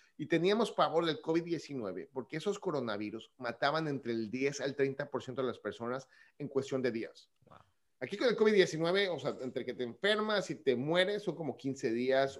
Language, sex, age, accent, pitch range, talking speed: Spanish, male, 30-49, Mexican, 125-165 Hz, 185 wpm